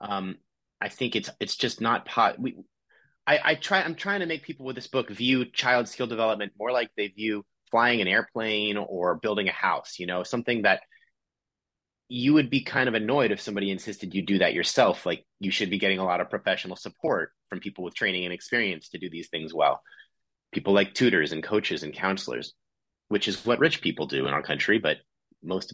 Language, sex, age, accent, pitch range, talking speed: English, male, 30-49, American, 100-135 Hz, 210 wpm